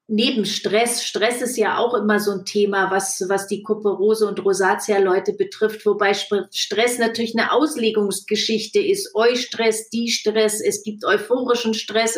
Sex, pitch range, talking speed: female, 205-240 Hz, 150 wpm